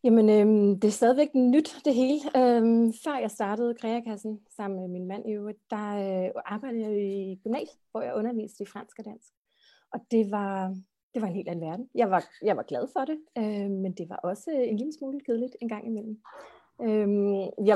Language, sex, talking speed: Danish, female, 185 wpm